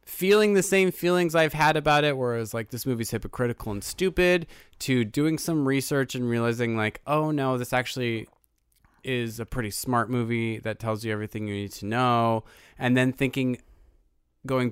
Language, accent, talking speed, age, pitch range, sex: English, American, 180 wpm, 20-39, 110-145 Hz, male